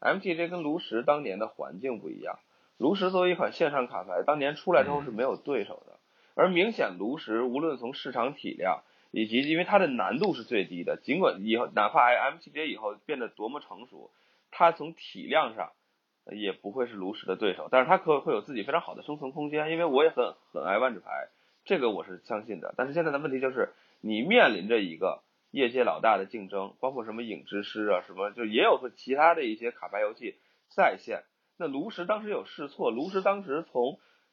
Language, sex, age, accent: Chinese, male, 20-39, native